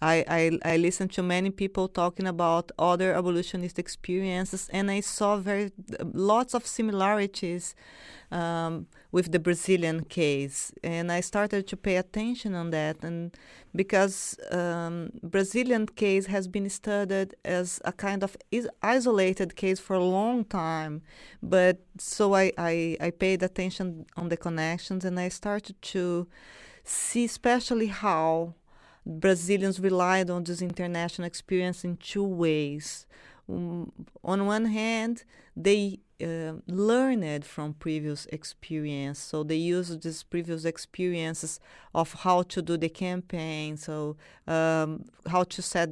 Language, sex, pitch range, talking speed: English, female, 165-195 Hz, 135 wpm